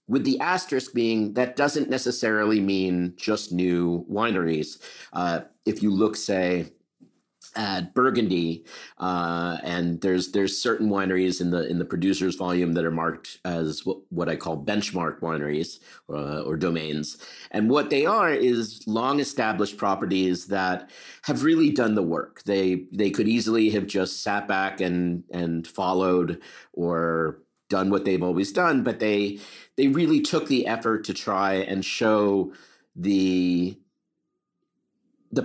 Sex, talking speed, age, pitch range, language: male, 145 wpm, 50-69, 90-110 Hz, English